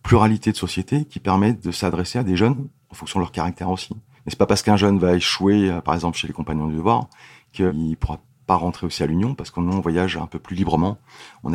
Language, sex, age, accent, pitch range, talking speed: French, male, 40-59, French, 85-110 Hz, 240 wpm